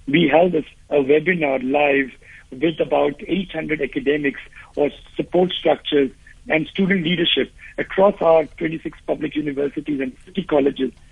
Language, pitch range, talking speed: English, 145-185 Hz, 130 wpm